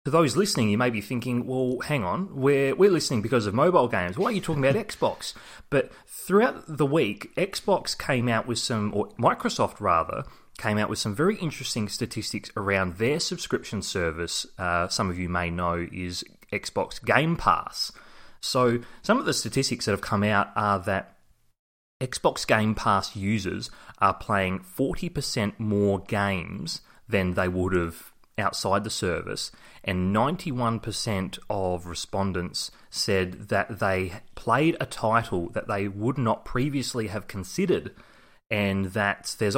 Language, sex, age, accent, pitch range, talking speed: English, male, 30-49, Australian, 95-120 Hz, 155 wpm